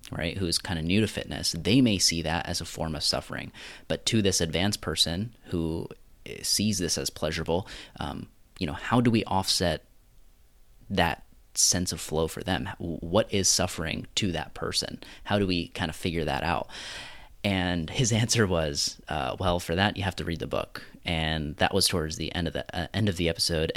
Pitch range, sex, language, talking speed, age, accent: 80-95 Hz, male, English, 200 wpm, 30-49, American